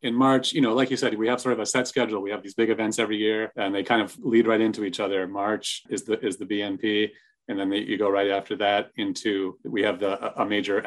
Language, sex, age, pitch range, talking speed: English, male, 30-49, 95-115 Hz, 275 wpm